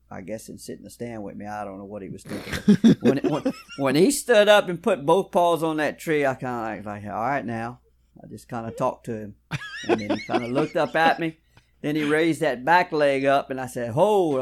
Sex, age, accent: male, 50-69, American